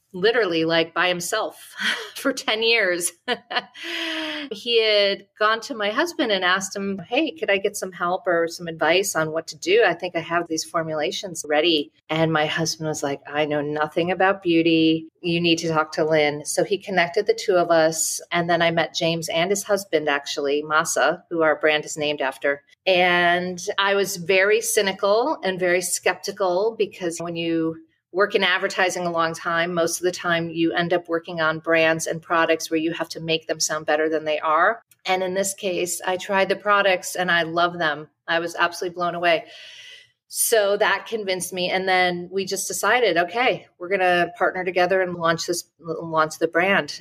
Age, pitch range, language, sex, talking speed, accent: 40-59, 160-195 Hz, English, female, 195 wpm, American